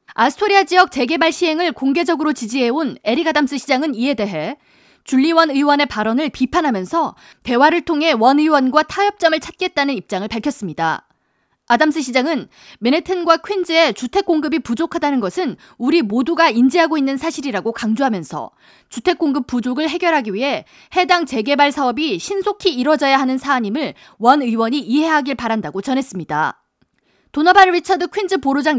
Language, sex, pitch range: Korean, female, 250-335 Hz